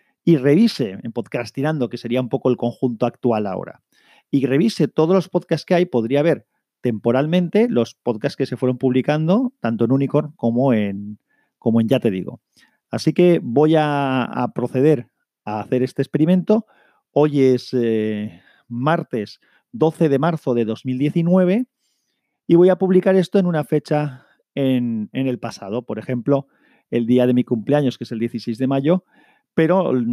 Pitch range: 120-155 Hz